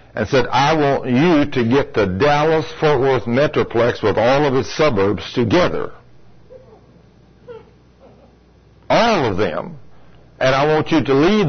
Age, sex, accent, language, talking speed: 60-79, male, American, English, 135 wpm